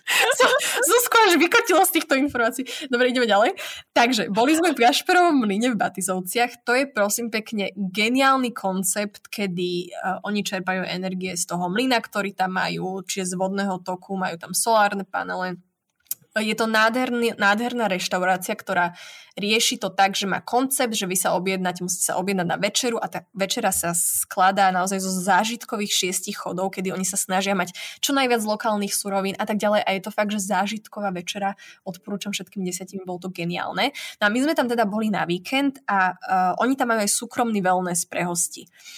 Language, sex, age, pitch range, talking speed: Slovak, female, 20-39, 185-240 Hz, 185 wpm